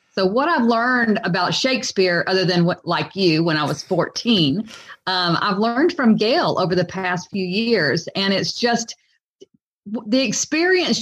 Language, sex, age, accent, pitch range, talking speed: English, female, 40-59, American, 180-235 Hz, 165 wpm